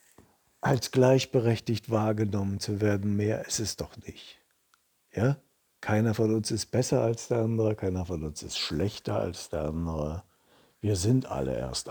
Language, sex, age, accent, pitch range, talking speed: German, male, 60-79, German, 95-125 Hz, 150 wpm